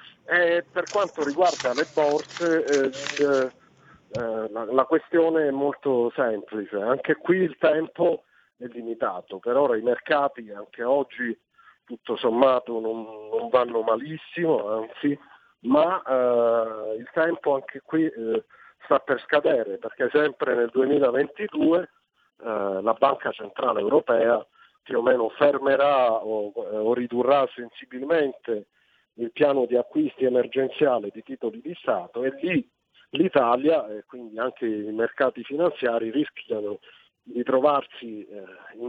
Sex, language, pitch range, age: male, Italian, 115-150 Hz, 50-69